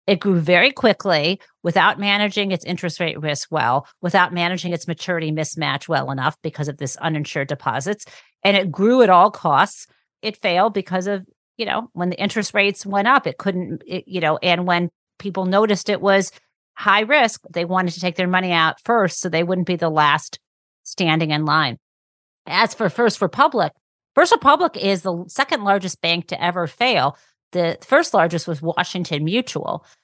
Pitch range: 165-200 Hz